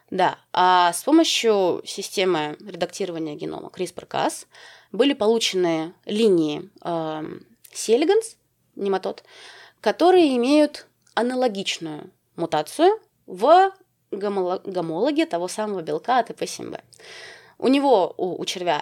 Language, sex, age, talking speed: Russian, female, 20-39, 100 wpm